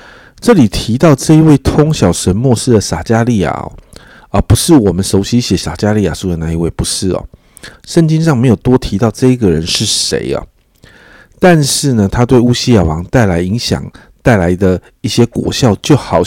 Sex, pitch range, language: male, 95-125 Hz, Chinese